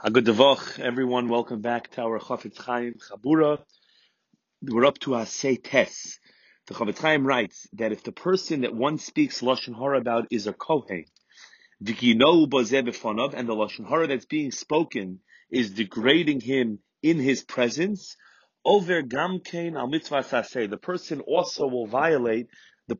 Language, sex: English, male